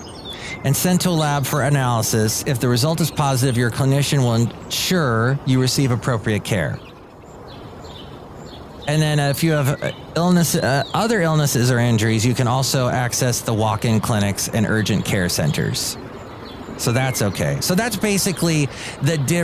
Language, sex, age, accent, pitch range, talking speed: English, male, 30-49, American, 110-155 Hz, 155 wpm